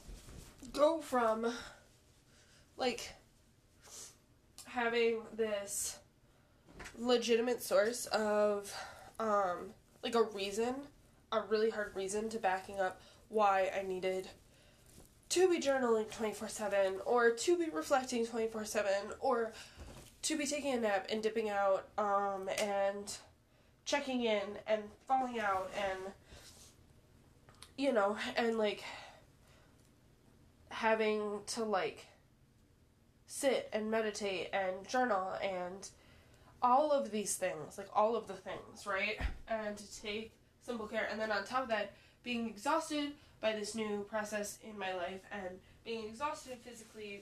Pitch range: 200-235 Hz